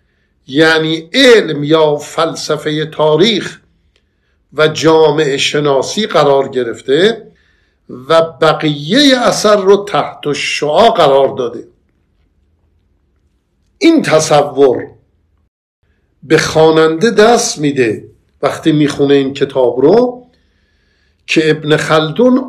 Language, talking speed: Persian, 85 wpm